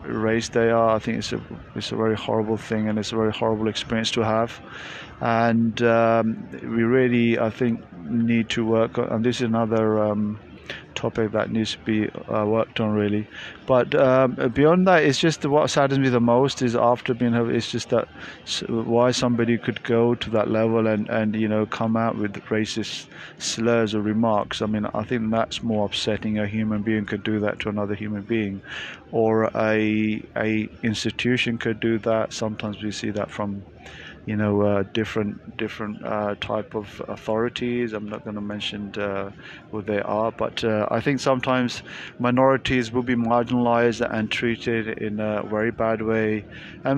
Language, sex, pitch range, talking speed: English, male, 105-120 Hz, 180 wpm